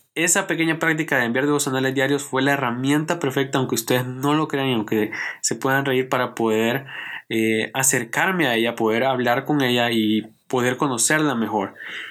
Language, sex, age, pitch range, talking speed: Spanish, male, 20-39, 120-150 Hz, 175 wpm